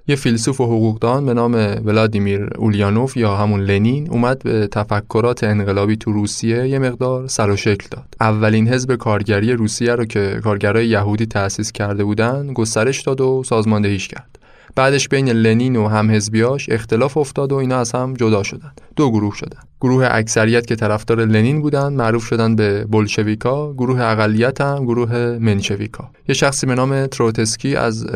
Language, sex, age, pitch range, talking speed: Persian, male, 20-39, 105-130 Hz, 160 wpm